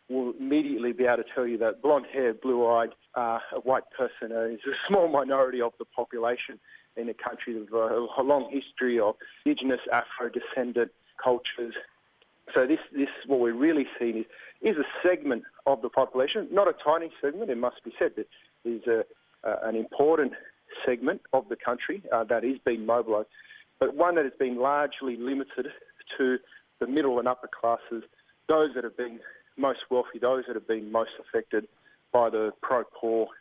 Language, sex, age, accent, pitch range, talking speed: English, male, 40-59, Australian, 115-145 Hz, 175 wpm